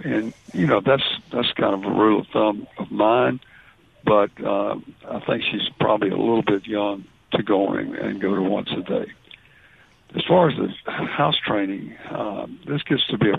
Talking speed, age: 195 wpm, 60-79